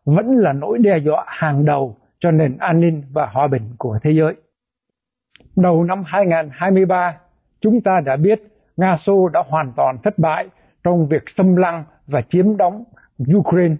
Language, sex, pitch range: Vietnamese, male, 155-195 Hz